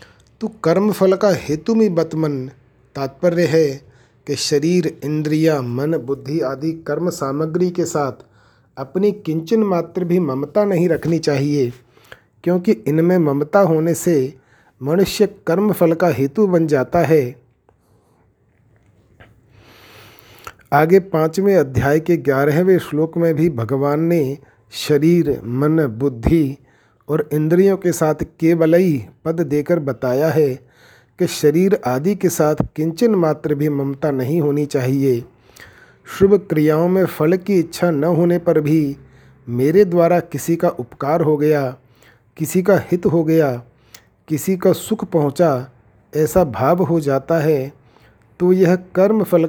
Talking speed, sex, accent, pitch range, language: 130 wpm, male, native, 135-175 Hz, Hindi